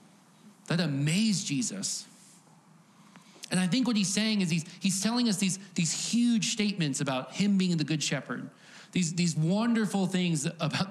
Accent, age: American, 40-59